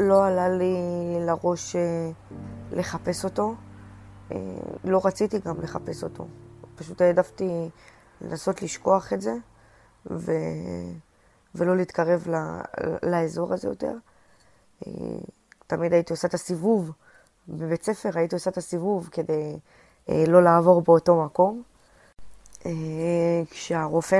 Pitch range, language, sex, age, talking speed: 155-180 Hz, Hebrew, female, 20-39, 95 wpm